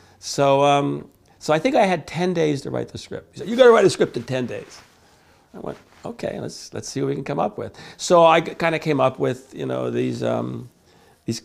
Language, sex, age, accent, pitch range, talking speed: English, male, 50-69, American, 110-140 Hz, 250 wpm